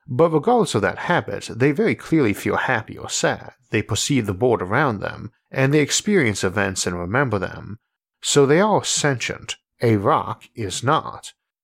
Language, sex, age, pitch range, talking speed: English, male, 50-69, 95-130 Hz, 170 wpm